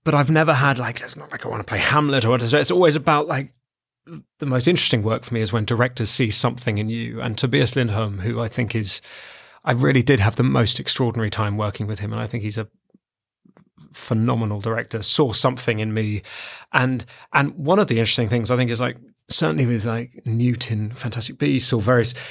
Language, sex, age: English, male, 30-49